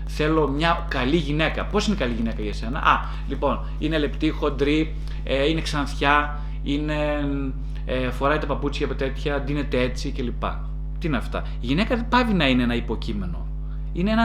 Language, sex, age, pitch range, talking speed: Greek, male, 30-49, 145-180 Hz, 175 wpm